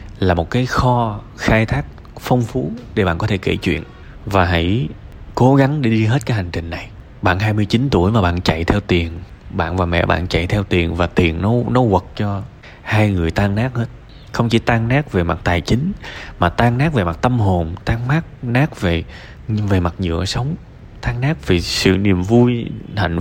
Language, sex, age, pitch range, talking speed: Vietnamese, male, 20-39, 90-120 Hz, 210 wpm